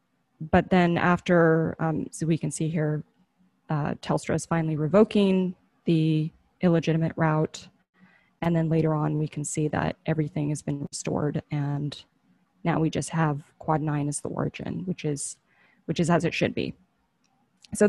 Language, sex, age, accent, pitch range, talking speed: English, female, 20-39, American, 150-180 Hz, 160 wpm